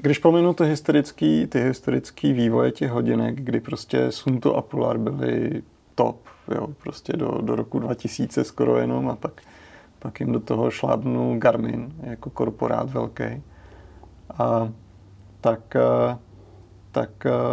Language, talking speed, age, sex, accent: Czech, 125 wpm, 30-49, male, native